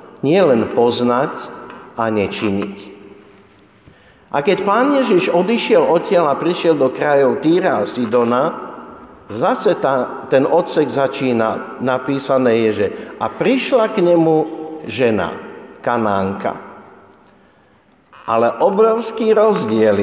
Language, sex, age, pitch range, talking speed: Slovak, male, 50-69, 120-195 Hz, 100 wpm